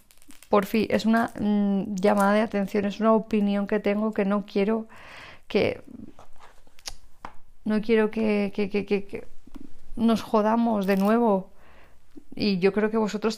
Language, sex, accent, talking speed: Spanish, female, Spanish, 145 wpm